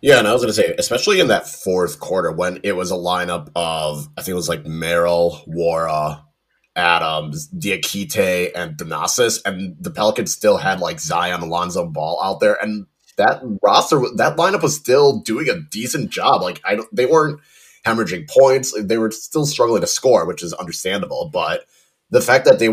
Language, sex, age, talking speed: English, male, 30-49, 190 wpm